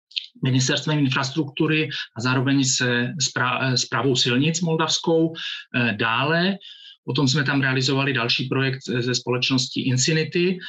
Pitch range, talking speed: 120-140 Hz, 100 wpm